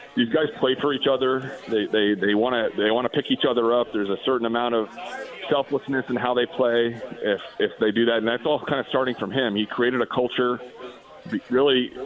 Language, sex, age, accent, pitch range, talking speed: English, male, 40-59, American, 105-125 Hz, 220 wpm